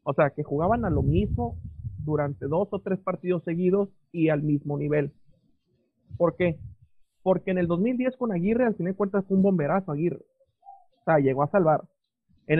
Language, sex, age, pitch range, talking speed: Spanish, male, 40-59, 150-205 Hz, 185 wpm